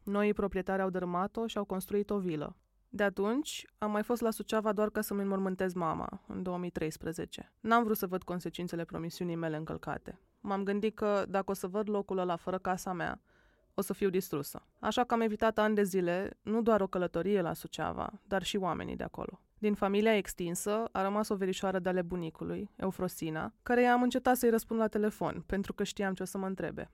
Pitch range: 180-210 Hz